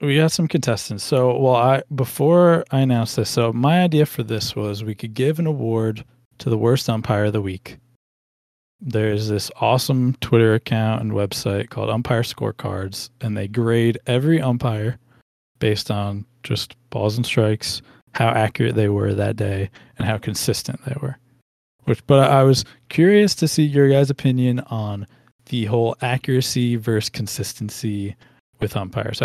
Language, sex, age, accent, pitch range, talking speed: English, male, 20-39, American, 105-130 Hz, 160 wpm